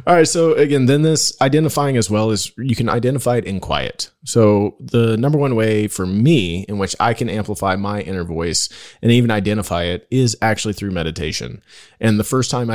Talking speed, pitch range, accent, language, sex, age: 205 wpm, 95-115 Hz, American, English, male, 30-49